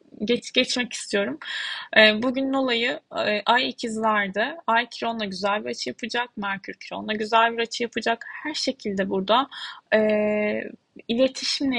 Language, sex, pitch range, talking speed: Turkish, female, 205-245 Hz, 120 wpm